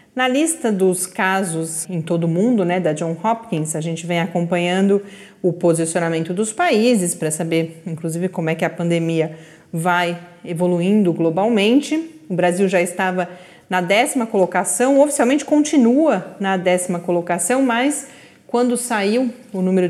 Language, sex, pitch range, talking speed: Portuguese, female, 175-230 Hz, 145 wpm